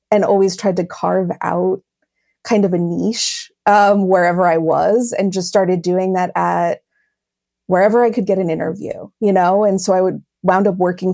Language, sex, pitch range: English, female, 180-210 Hz